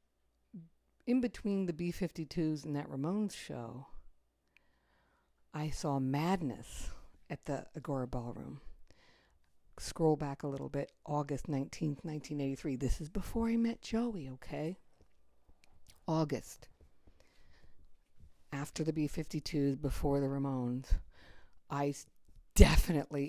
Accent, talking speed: American, 100 wpm